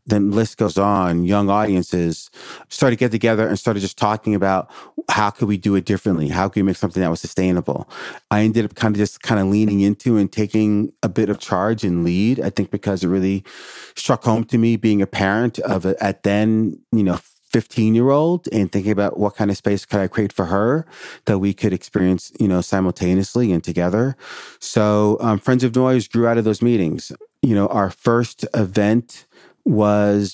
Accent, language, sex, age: American, English, male, 30-49